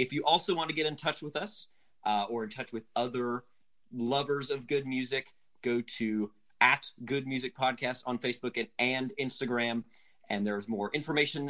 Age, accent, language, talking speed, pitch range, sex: 30-49, American, English, 185 wpm, 105-145 Hz, male